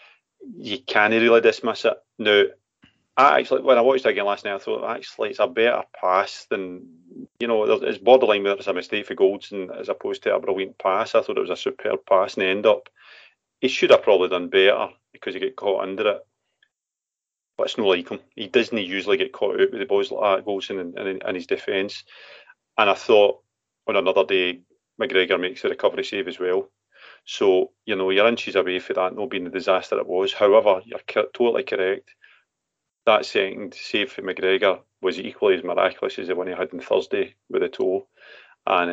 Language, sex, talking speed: English, male, 205 wpm